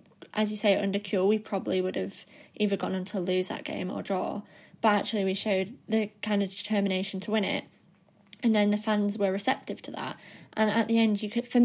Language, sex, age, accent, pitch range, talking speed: English, female, 20-39, British, 200-225 Hz, 225 wpm